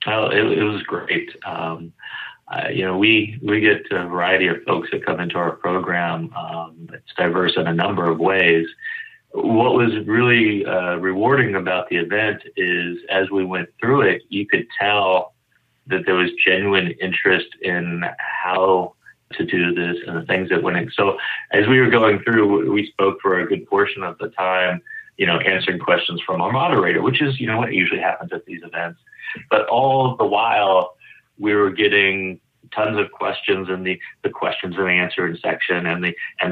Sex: male